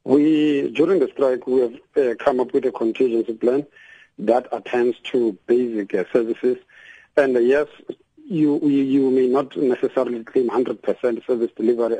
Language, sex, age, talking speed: English, male, 50-69, 160 wpm